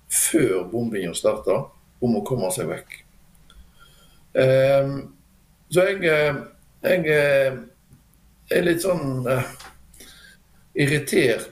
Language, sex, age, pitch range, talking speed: English, male, 60-79, 115-145 Hz, 80 wpm